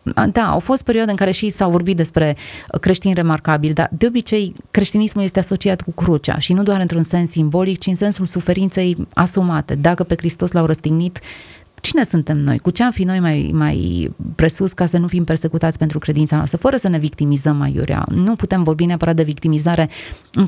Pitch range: 155-180 Hz